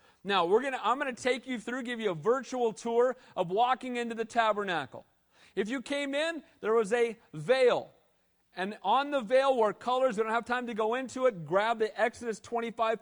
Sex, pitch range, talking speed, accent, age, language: male, 205-250 Hz, 200 wpm, American, 40-59, English